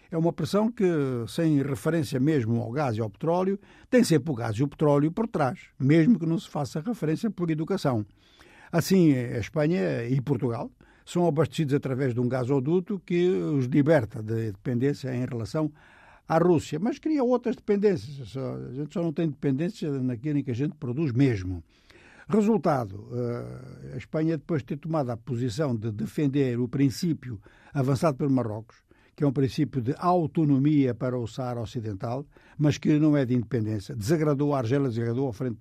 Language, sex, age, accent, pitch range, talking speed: Portuguese, male, 60-79, Brazilian, 120-160 Hz, 175 wpm